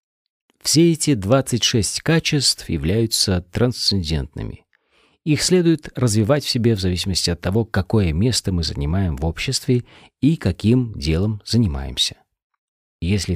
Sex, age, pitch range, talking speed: male, 40-59, 90-140 Hz, 120 wpm